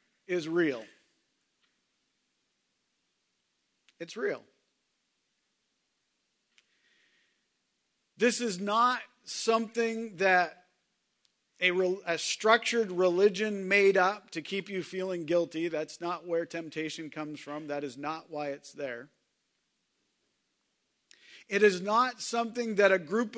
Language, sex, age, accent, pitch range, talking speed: English, male, 40-59, American, 155-210 Hz, 105 wpm